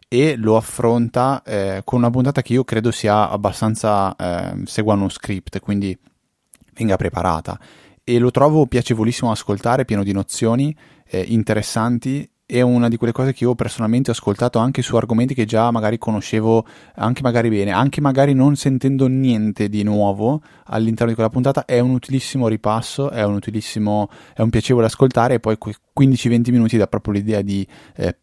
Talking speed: 170 wpm